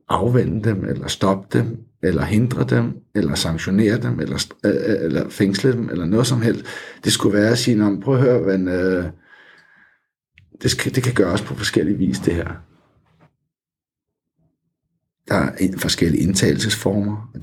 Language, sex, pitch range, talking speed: Danish, male, 95-110 Hz, 160 wpm